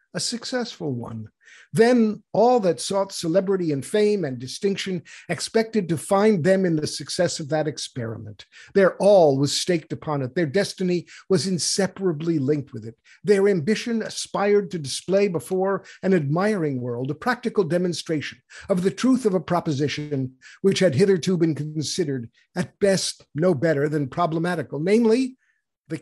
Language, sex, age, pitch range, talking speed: English, male, 50-69, 150-195 Hz, 150 wpm